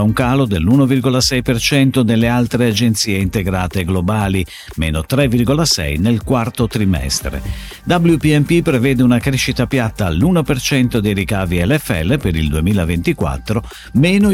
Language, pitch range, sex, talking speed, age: Italian, 100-150 Hz, male, 110 wpm, 50-69